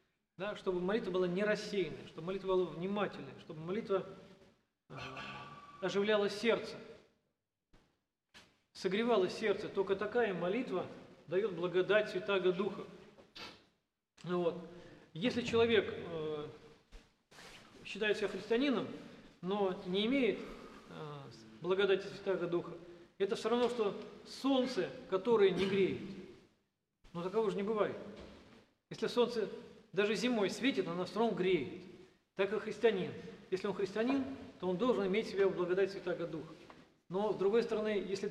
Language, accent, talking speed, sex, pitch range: Russian, native, 125 wpm, male, 185-220 Hz